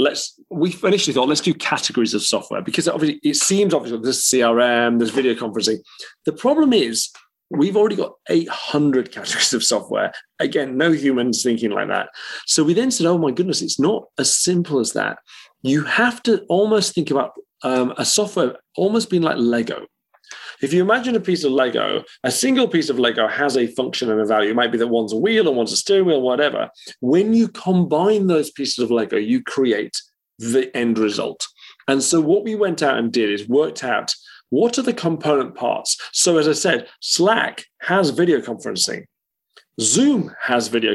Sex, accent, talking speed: male, British, 195 wpm